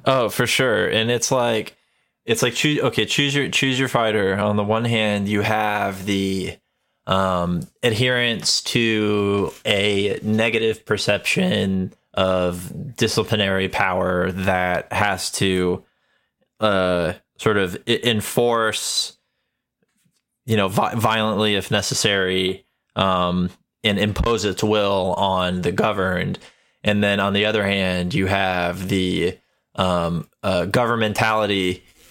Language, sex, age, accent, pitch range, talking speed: English, male, 20-39, American, 95-115 Hz, 120 wpm